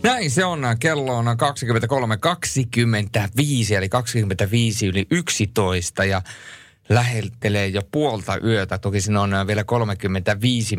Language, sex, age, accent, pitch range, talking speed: Finnish, male, 30-49, native, 100-130 Hz, 110 wpm